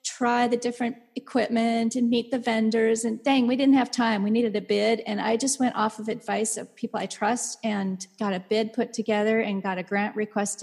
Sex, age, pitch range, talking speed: female, 40-59, 210-265 Hz, 225 wpm